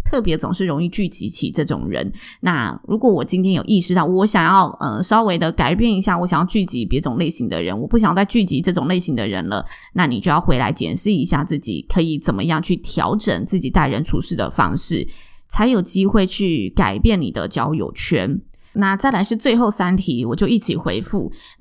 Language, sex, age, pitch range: Chinese, female, 20-39, 170-210 Hz